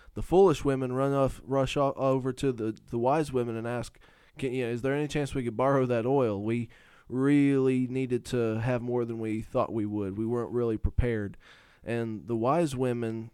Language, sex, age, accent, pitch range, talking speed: English, male, 20-39, American, 110-130 Hz, 200 wpm